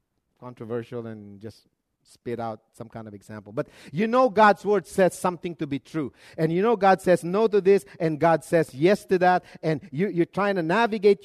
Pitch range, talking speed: 170-220 Hz, 210 wpm